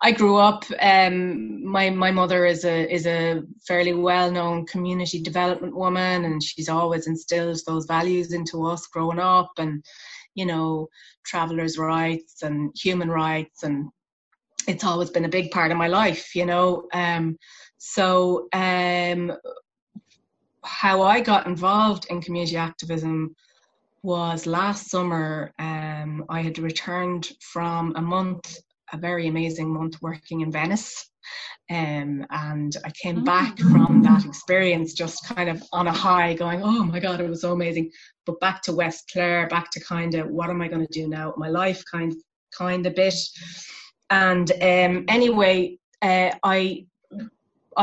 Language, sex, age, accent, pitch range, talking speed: English, female, 20-39, Irish, 165-185 Hz, 155 wpm